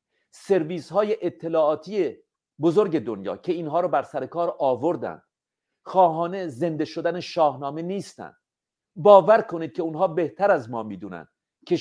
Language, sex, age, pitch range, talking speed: Persian, male, 50-69, 145-190 Hz, 125 wpm